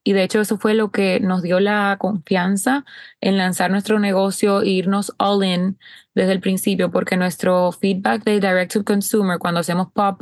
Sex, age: female, 20-39